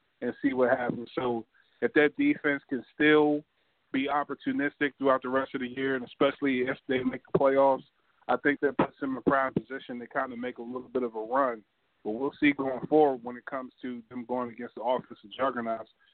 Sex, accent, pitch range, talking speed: male, American, 125-145 Hz, 220 wpm